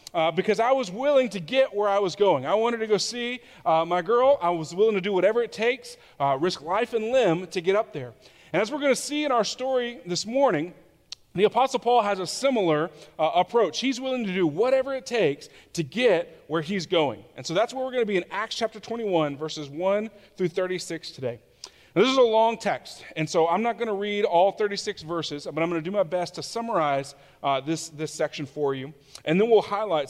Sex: male